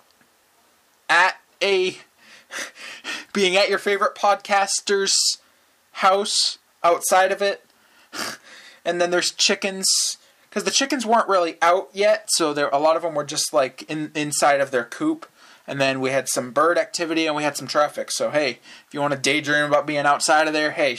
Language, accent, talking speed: English, American, 175 wpm